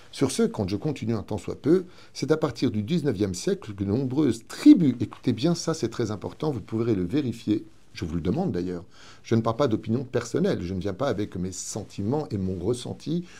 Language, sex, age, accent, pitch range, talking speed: French, male, 50-69, French, 100-145 Hz, 225 wpm